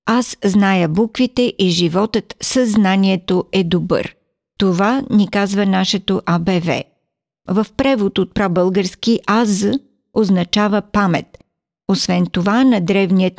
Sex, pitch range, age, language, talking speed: female, 185-230 Hz, 50-69, Bulgarian, 110 wpm